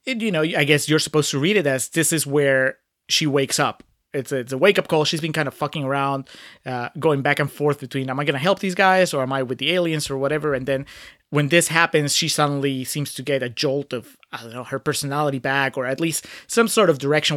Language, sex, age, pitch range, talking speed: English, male, 30-49, 135-165 Hz, 255 wpm